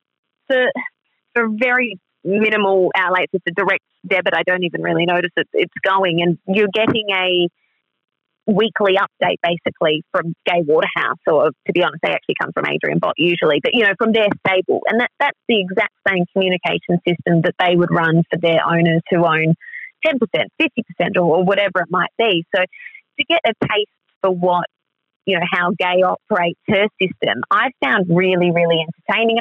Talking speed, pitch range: 175 wpm, 175-210 Hz